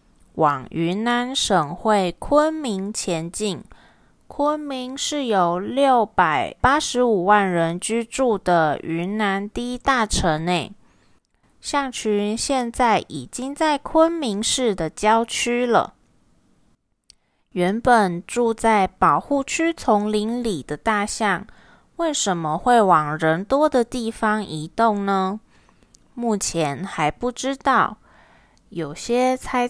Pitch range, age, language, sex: 185-250 Hz, 20-39, Chinese, female